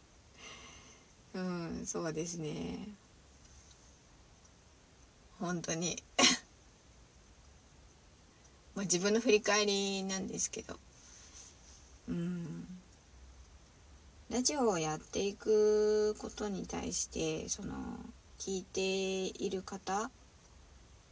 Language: Japanese